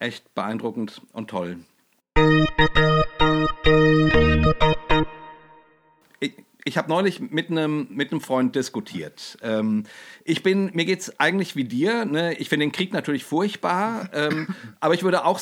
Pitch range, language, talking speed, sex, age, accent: 140-175 Hz, German, 130 wpm, male, 50-69, German